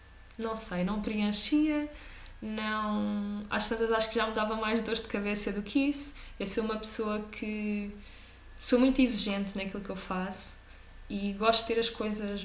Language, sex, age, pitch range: Portuguese, female, 20-39, 200-235 Hz